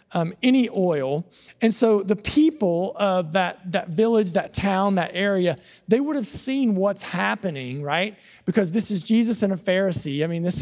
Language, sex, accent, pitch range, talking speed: English, male, American, 175-225 Hz, 180 wpm